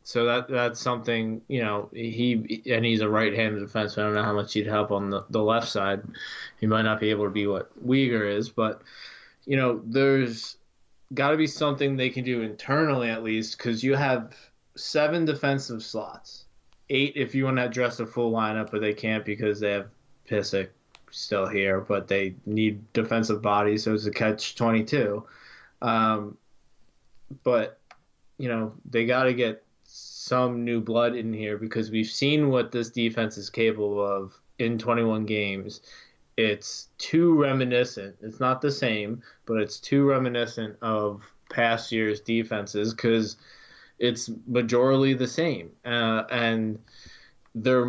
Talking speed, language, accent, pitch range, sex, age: 165 wpm, English, American, 105-125 Hz, male, 20-39